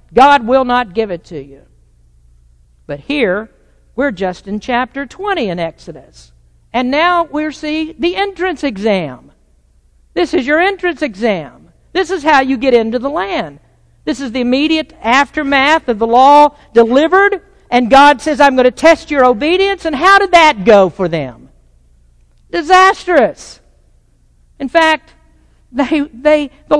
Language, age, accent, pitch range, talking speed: English, 50-69, American, 195-320 Hz, 145 wpm